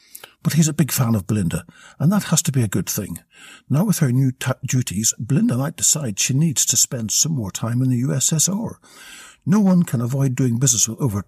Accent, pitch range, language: British, 115-160 Hz, English